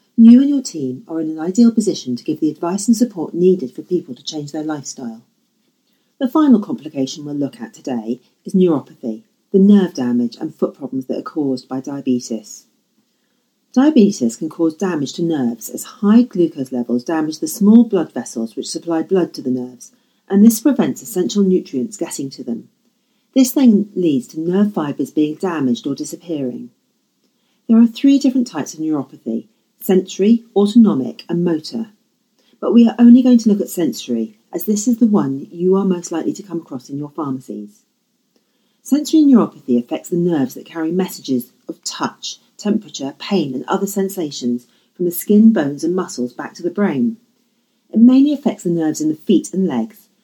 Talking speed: 180 wpm